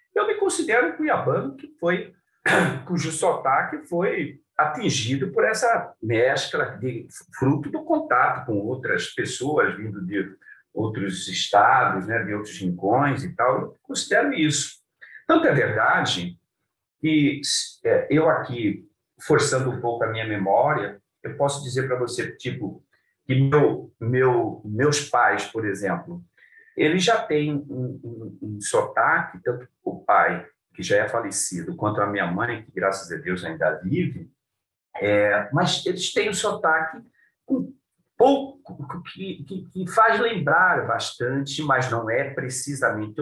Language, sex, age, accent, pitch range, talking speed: Portuguese, male, 50-69, Brazilian, 115-185 Hz, 130 wpm